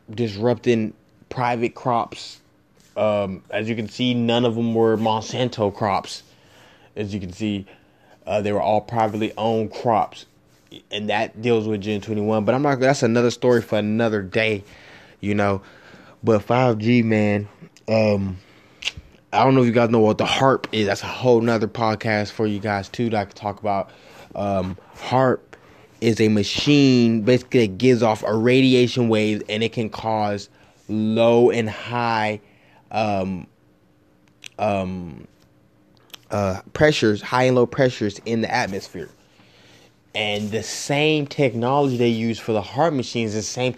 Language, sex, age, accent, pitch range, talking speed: English, male, 20-39, American, 100-120 Hz, 155 wpm